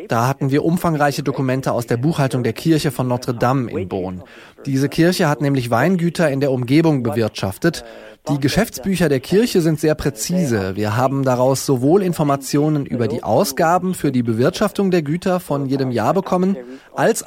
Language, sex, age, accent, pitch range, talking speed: German, male, 20-39, German, 130-165 Hz, 165 wpm